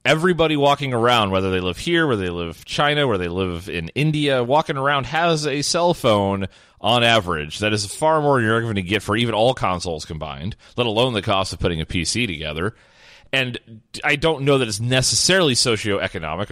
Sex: male